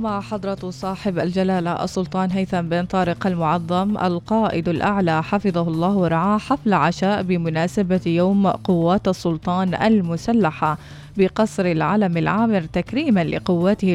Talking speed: 110 wpm